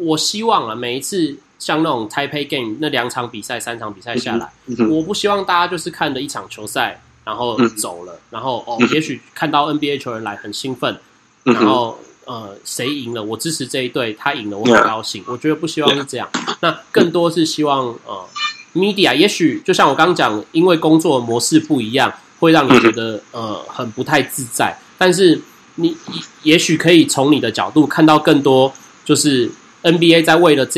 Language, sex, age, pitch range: Chinese, male, 30-49, 120-160 Hz